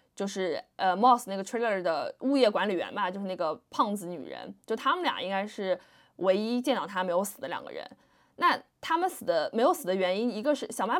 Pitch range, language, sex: 190-260 Hz, Chinese, female